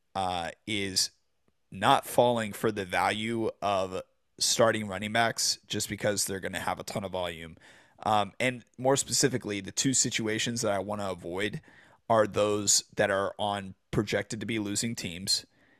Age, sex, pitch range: 30-49, male, 100-120 Hz